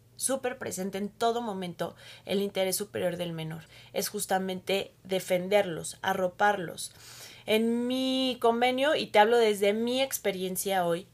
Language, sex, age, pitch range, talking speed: Spanish, female, 20-39, 175-215 Hz, 130 wpm